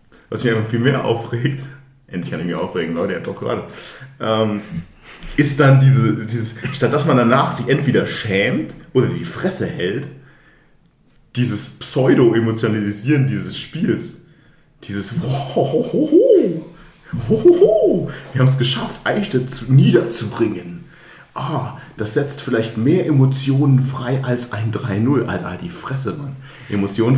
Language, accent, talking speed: German, German, 125 wpm